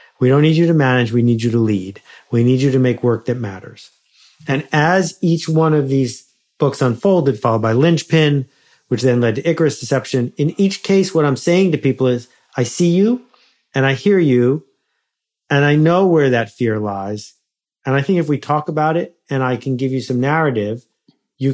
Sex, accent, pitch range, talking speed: male, American, 115-145 Hz, 210 wpm